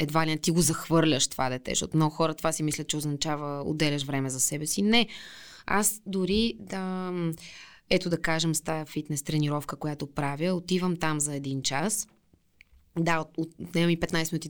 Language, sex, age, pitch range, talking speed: Bulgarian, female, 20-39, 150-210 Hz, 180 wpm